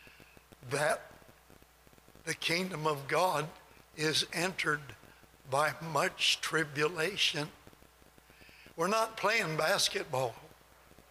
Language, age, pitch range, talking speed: English, 60-79, 150-185 Hz, 75 wpm